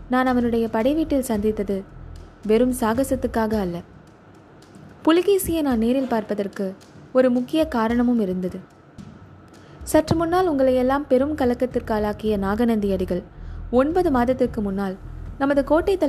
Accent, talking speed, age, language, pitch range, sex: native, 105 wpm, 20-39, Tamil, 200-260 Hz, female